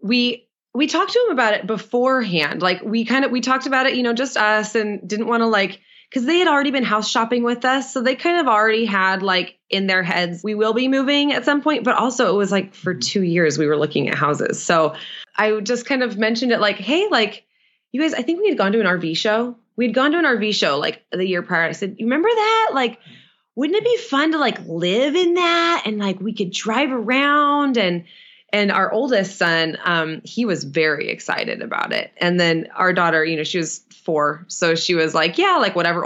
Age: 20-39